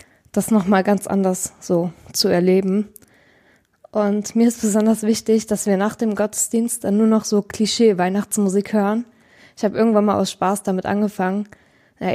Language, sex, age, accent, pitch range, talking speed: German, female, 20-39, German, 195-220 Hz, 160 wpm